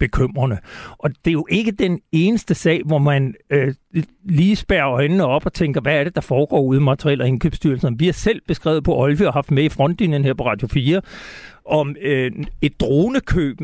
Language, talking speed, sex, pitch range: Danish, 205 wpm, male, 150-190 Hz